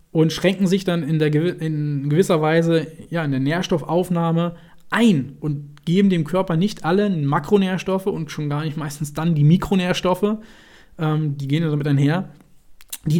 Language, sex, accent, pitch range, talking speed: German, male, German, 145-180 Hz, 160 wpm